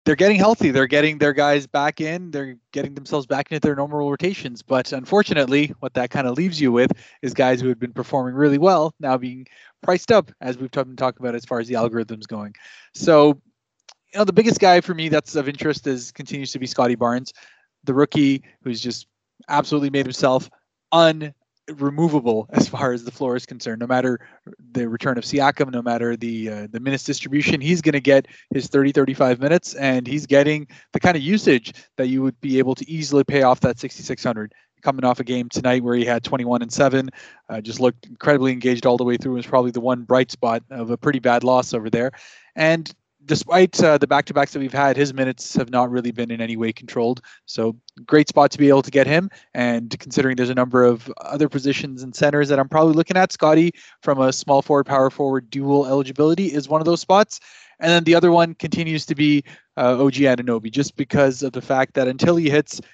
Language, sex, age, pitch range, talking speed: English, male, 20-39, 125-150 Hz, 215 wpm